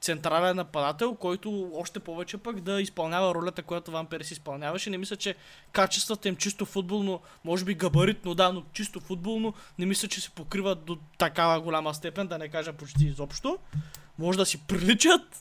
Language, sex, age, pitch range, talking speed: Bulgarian, male, 20-39, 165-205 Hz, 175 wpm